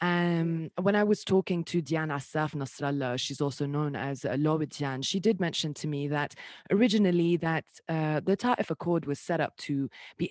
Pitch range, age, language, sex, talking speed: 140-175 Hz, 20-39, English, female, 185 wpm